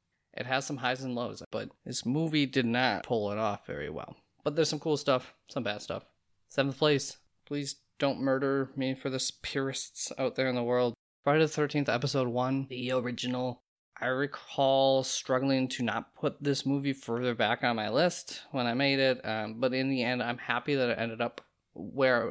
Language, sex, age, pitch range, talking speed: English, male, 20-39, 115-140 Hz, 200 wpm